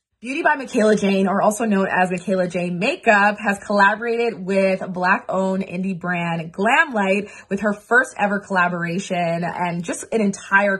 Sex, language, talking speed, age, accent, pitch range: female, English, 155 wpm, 20-39, American, 175-205 Hz